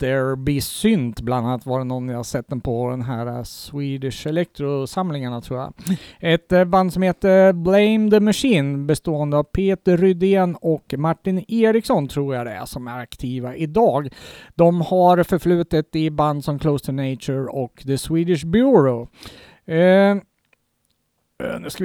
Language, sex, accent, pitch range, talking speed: Swedish, male, Norwegian, 135-185 Hz, 155 wpm